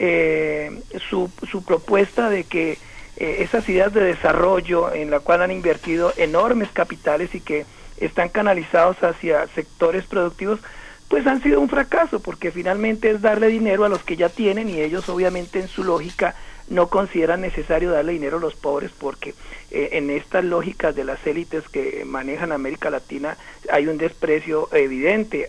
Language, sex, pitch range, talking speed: Spanish, male, 170-230 Hz, 165 wpm